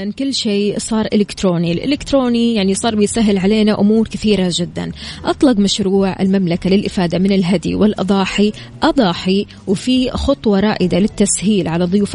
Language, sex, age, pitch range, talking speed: Arabic, female, 20-39, 185-225 Hz, 130 wpm